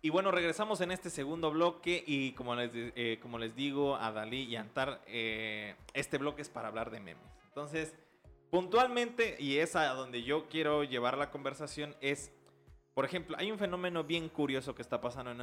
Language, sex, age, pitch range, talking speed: Spanish, male, 30-49, 115-150 Hz, 195 wpm